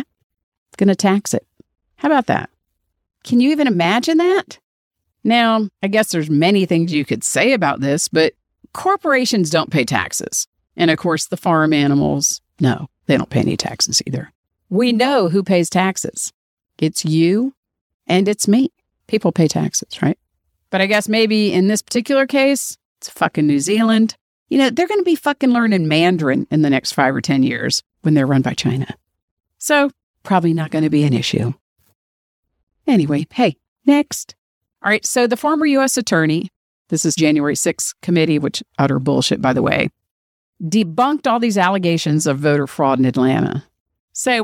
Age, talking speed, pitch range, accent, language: 50-69, 170 wpm, 150-230 Hz, American, English